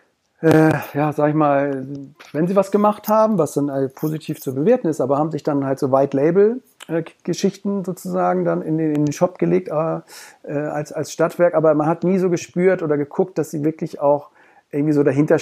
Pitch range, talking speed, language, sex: 135-160 Hz, 180 wpm, German, male